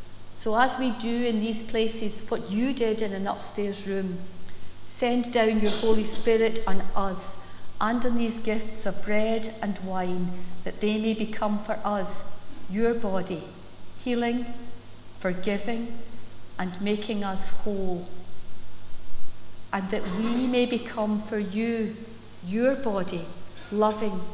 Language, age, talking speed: English, 50-69, 130 wpm